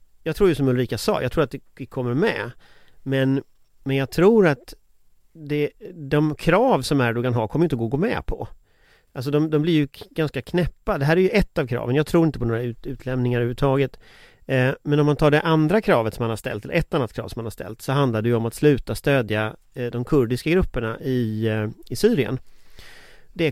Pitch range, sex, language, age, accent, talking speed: 120-155 Hz, male, Swedish, 30-49, native, 230 wpm